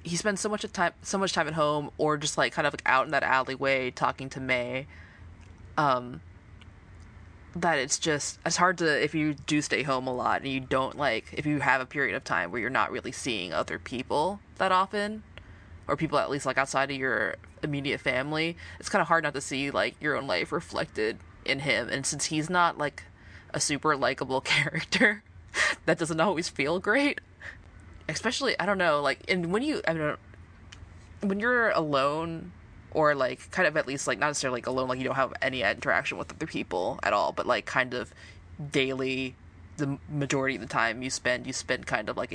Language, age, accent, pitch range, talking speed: English, 20-39, American, 125-160 Hz, 210 wpm